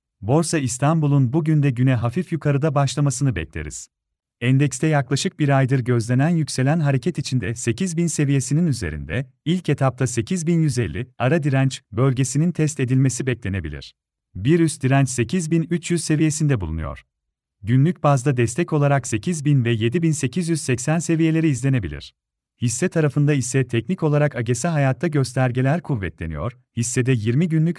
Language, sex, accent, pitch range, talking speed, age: Turkish, male, native, 120-155 Hz, 120 wpm, 40-59